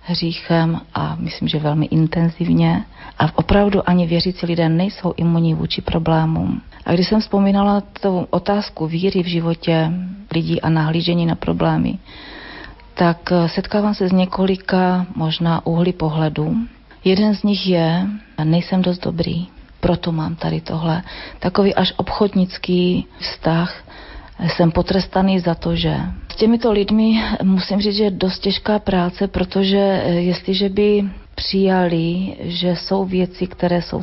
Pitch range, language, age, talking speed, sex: 165-190 Hz, Slovak, 40-59, 130 wpm, female